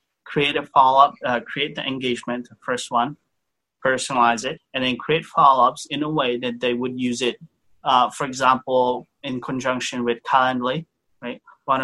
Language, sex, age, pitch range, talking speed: English, male, 30-49, 120-130 Hz, 175 wpm